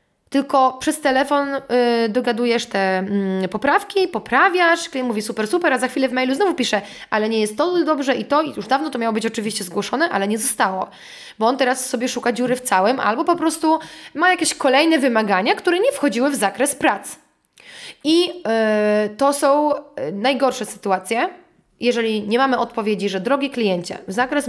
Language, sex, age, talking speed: Polish, female, 20-39, 180 wpm